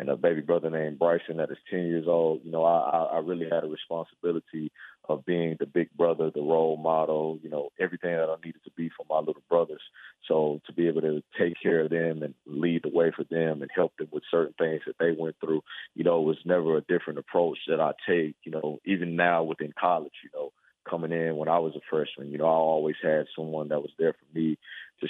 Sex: male